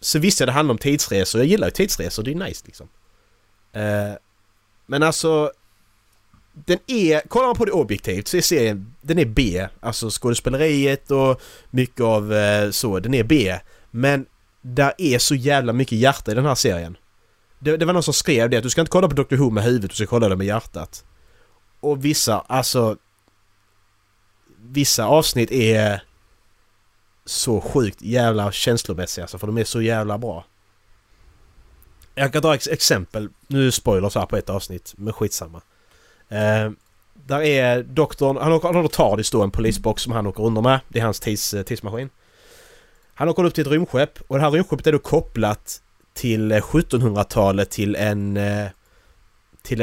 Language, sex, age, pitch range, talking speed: Swedish, male, 30-49, 100-135 Hz, 170 wpm